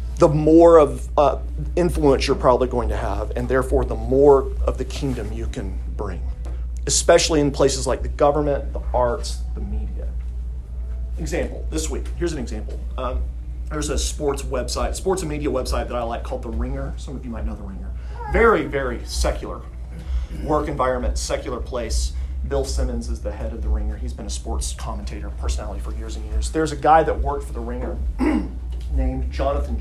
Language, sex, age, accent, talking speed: English, male, 40-59, American, 185 wpm